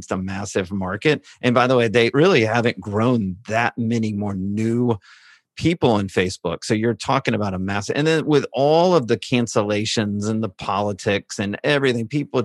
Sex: male